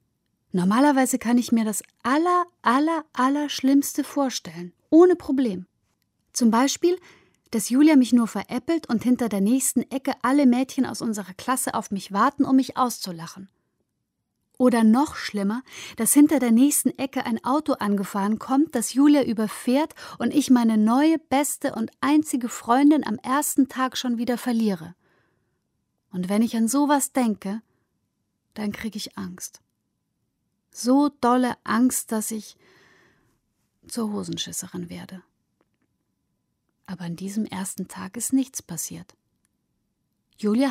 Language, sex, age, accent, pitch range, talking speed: German, female, 30-49, German, 200-270 Hz, 135 wpm